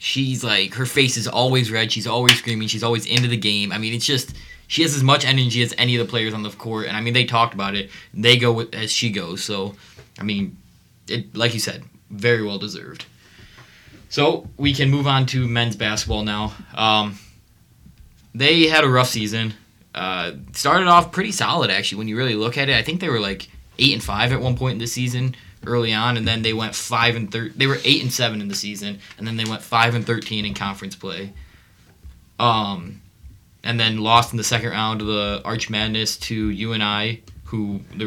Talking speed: 220 wpm